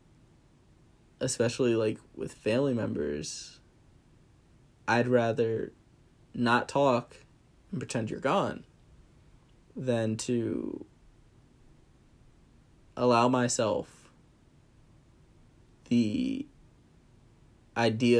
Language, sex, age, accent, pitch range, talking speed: English, male, 20-39, American, 115-130 Hz, 65 wpm